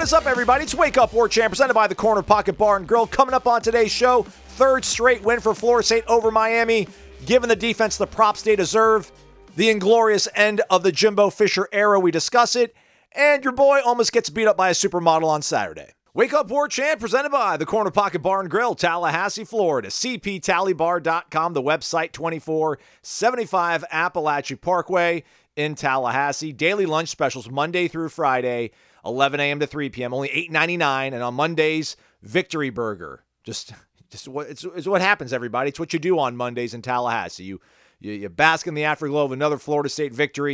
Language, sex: English, male